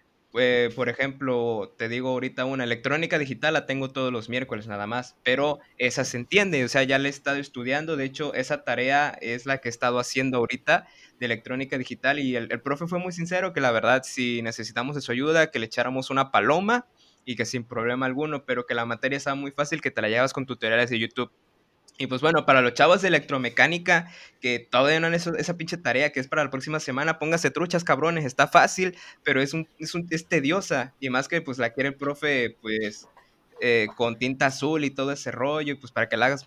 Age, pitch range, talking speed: 20-39, 125-155 Hz, 225 wpm